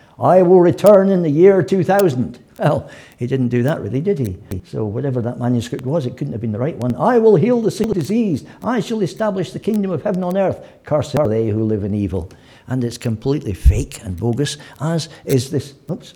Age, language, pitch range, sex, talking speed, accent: 60-79, English, 115-195 Hz, male, 220 wpm, British